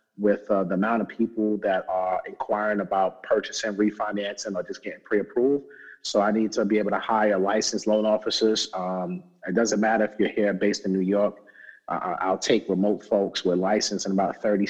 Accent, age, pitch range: American, 30-49, 95-110 Hz